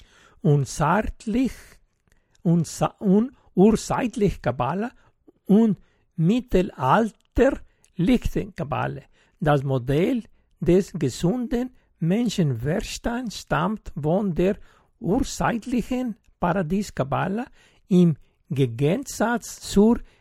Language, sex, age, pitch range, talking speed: German, male, 60-79, 155-235 Hz, 65 wpm